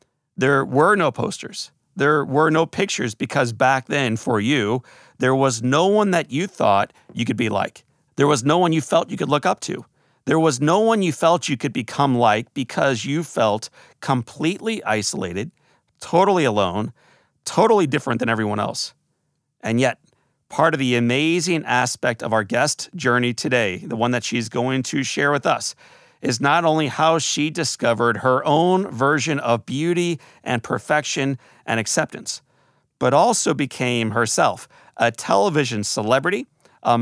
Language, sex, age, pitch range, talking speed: English, male, 40-59, 120-165 Hz, 165 wpm